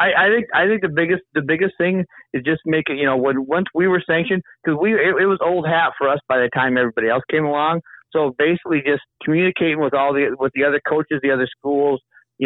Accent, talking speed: American, 250 wpm